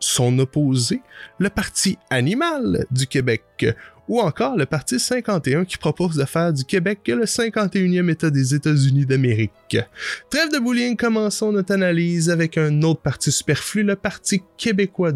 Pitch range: 145-210 Hz